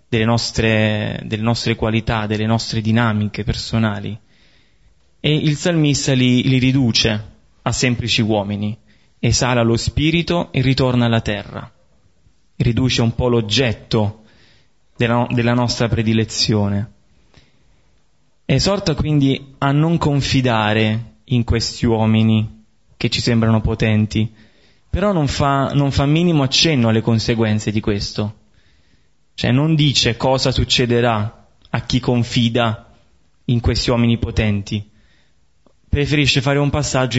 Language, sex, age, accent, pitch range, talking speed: Italian, male, 20-39, native, 110-130 Hz, 115 wpm